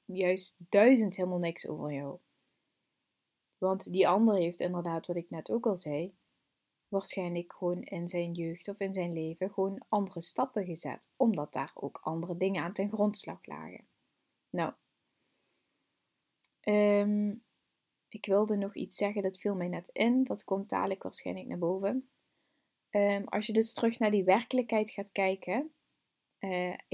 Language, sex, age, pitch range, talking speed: Dutch, female, 20-39, 175-215 Hz, 145 wpm